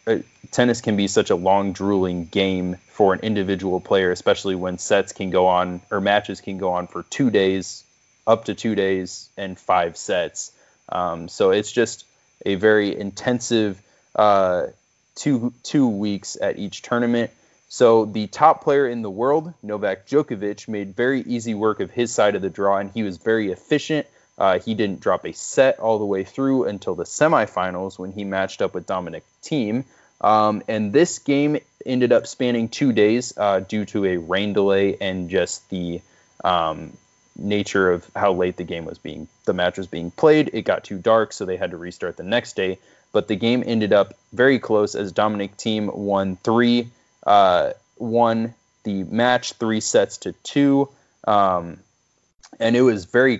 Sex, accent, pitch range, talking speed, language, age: male, American, 95-115 Hz, 180 wpm, English, 20-39